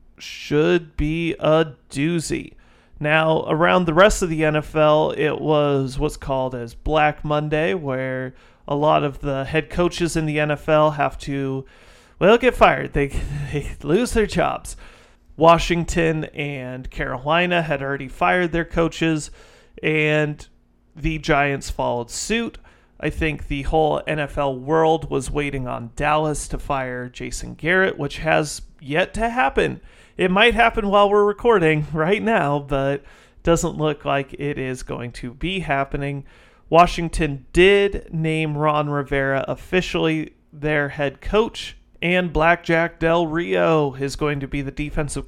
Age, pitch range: 30-49, 140-170 Hz